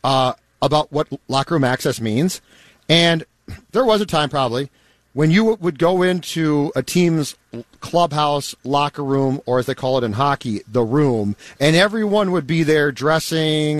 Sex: male